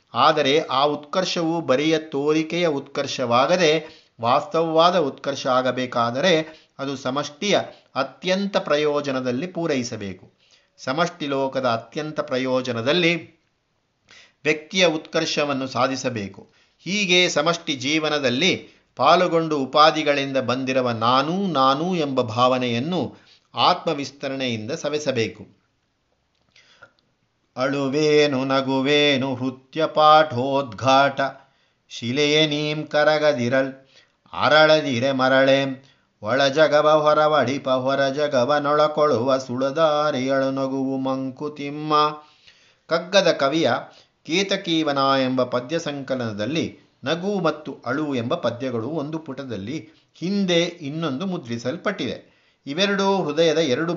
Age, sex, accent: 50-69, male, native